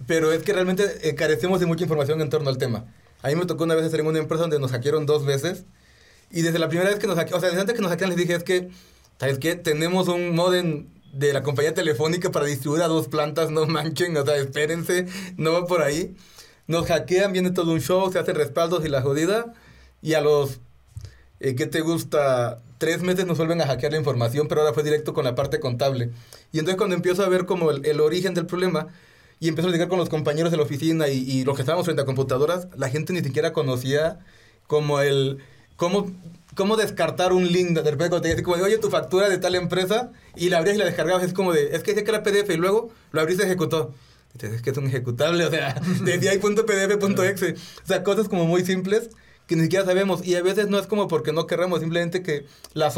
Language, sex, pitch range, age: Spanish, male, 150-180 Hz, 30-49